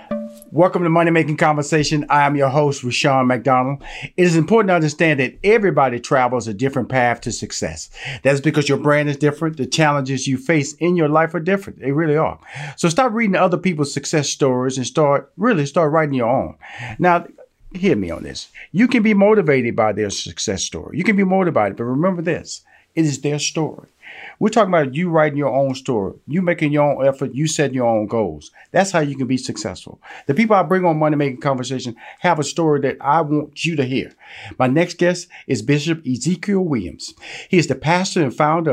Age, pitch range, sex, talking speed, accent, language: 40-59, 135-175 Hz, male, 205 wpm, American, English